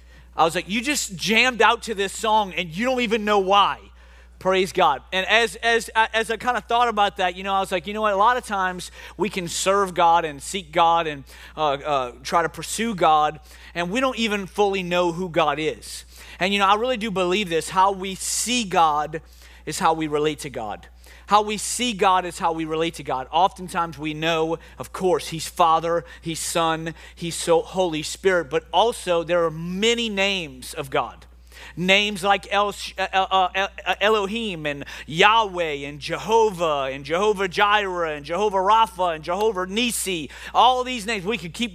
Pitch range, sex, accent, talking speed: 165-215 Hz, male, American, 195 wpm